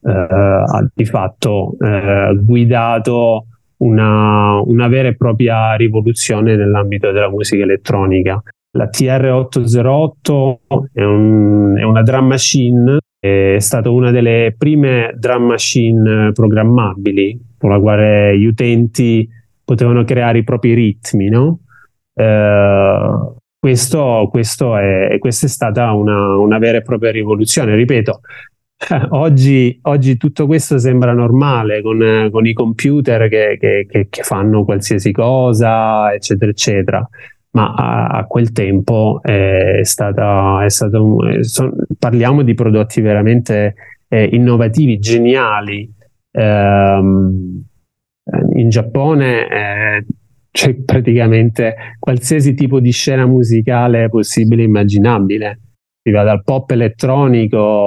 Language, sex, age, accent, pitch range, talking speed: Italian, male, 30-49, native, 105-125 Hz, 105 wpm